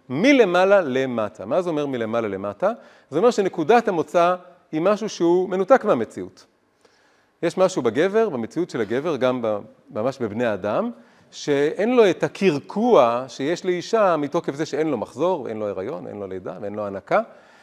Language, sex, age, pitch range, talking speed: Hebrew, male, 40-59, 145-210 Hz, 160 wpm